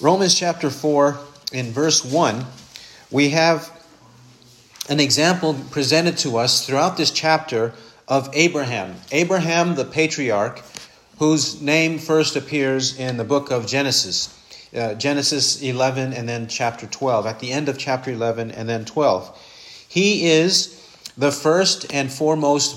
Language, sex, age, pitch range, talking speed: English, male, 40-59, 130-170 Hz, 135 wpm